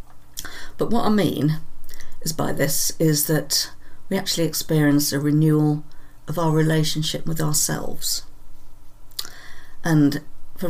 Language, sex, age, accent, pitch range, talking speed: English, female, 50-69, British, 140-160 Hz, 120 wpm